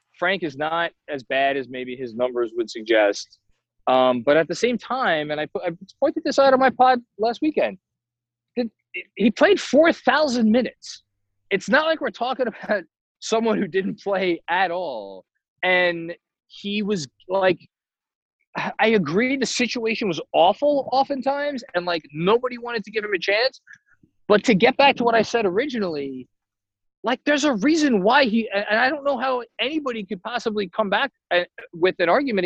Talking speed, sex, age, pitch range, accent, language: 170 wpm, male, 20-39, 175-275 Hz, American, English